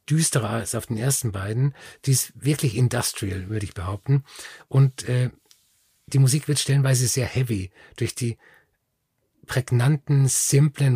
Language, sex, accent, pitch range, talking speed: German, male, German, 120-140 Hz, 135 wpm